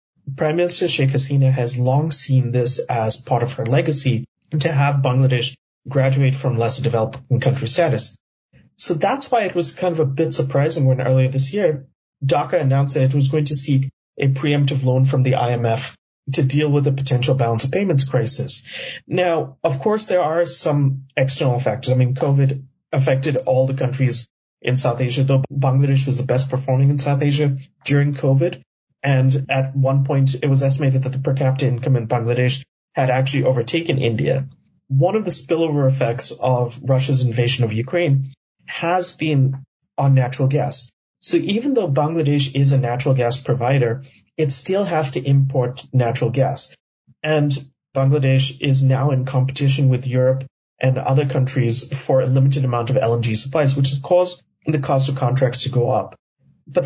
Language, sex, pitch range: English, male, 130-145 Hz